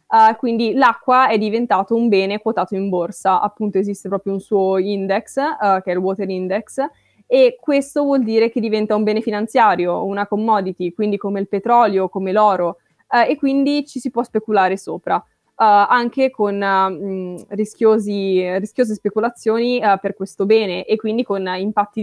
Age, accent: 20-39, native